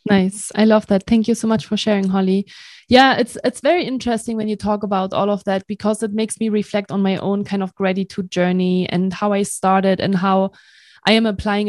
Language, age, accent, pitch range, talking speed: English, 20-39, German, 195-220 Hz, 225 wpm